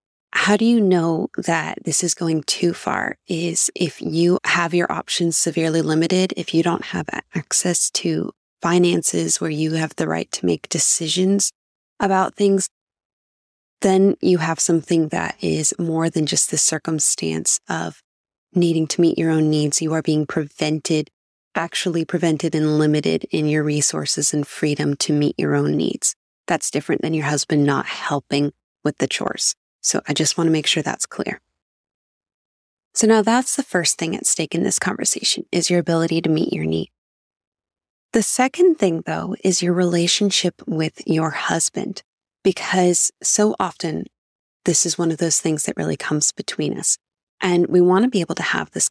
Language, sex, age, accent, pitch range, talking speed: English, female, 20-39, American, 150-180 Hz, 175 wpm